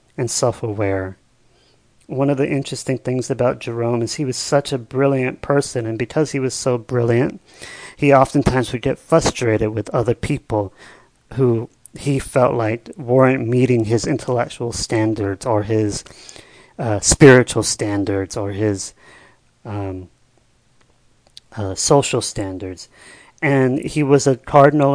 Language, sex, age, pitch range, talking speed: English, male, 40-59, 115-140 Hz, 130 wpm